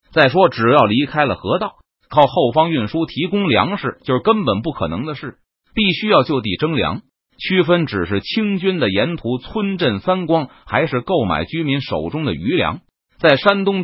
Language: Chinese